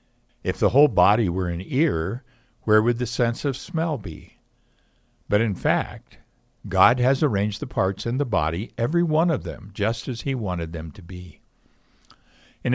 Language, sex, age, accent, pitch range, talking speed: English, male, 60-79, American, 90-120 Hz, 175 wpm